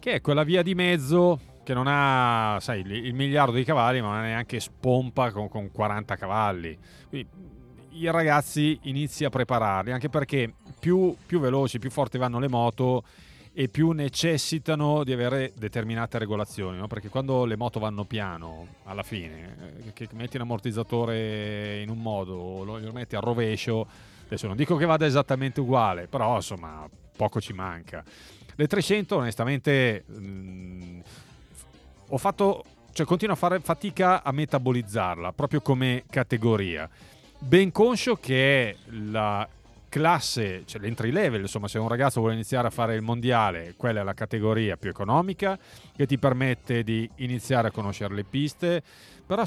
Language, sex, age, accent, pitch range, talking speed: Italian, male, 30-49, native, 110-150 Hz, 155 wpm